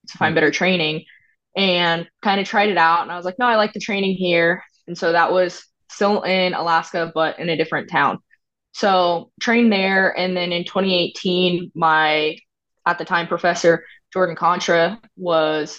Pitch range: 160-180 Hz